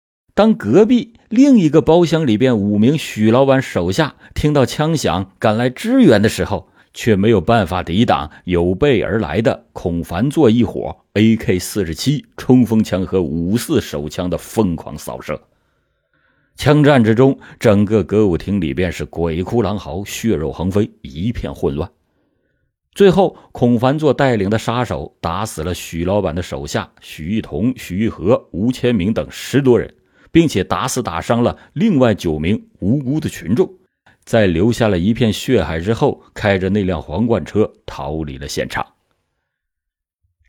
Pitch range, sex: 90-125 Hz, male